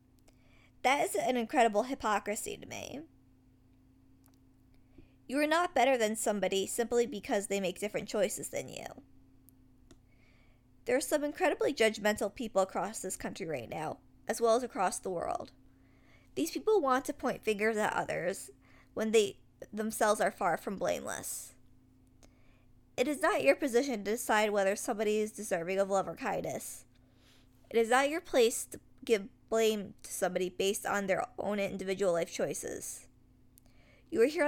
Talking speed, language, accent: 155 wpm, English, American